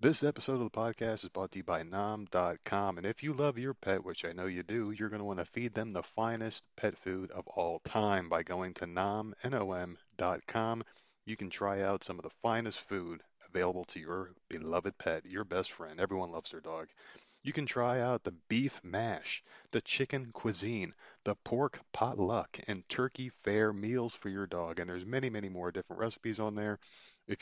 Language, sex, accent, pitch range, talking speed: English, male, American, 90-115 Hz, 200 wpm